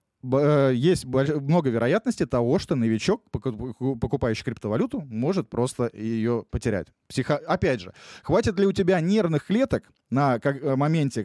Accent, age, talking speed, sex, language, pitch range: native, 20-39, 125 wpm, male, Russian, 115-155 Hz